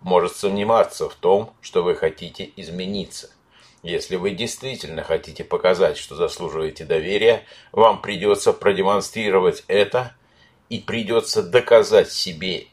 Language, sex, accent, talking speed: Russian, male, native, 115 wpm